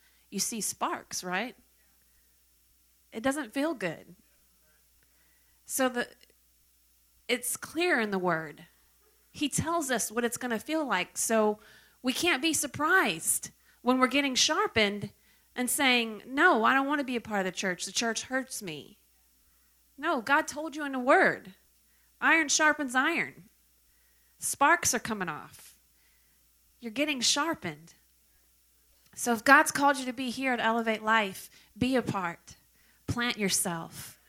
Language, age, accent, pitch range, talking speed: English, 40-59, American, 185-255 Hz, 145 wpm